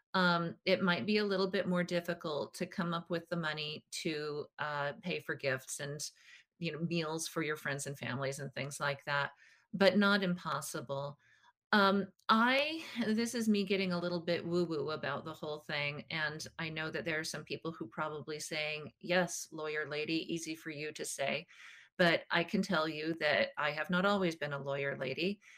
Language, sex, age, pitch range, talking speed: English, female, 40-59, 150-180 Hz, 195 wpm